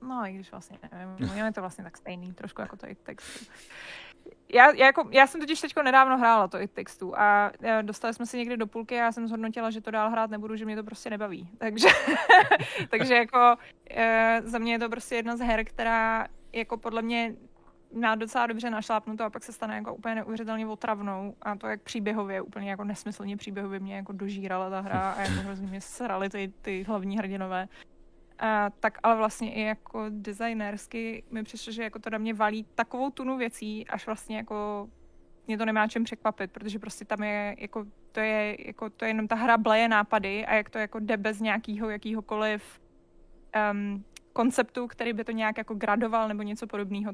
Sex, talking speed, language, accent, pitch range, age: female, 200 wpm, Czech, native, 205-225 Hz, 20-39